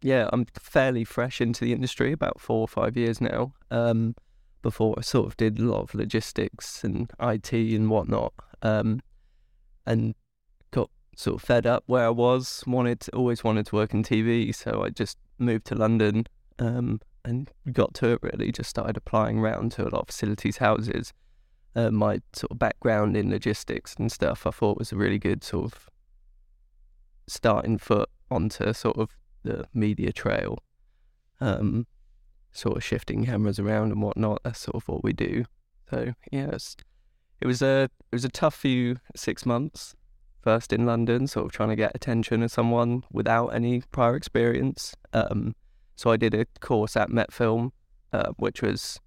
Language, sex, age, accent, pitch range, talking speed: English, male, 20-39, British, 105-120 Hz, 180 wpm